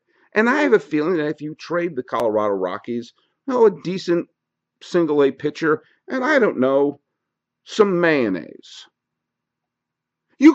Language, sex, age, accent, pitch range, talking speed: English, male, 50-69, American, 125-180 Hz, 140 wpm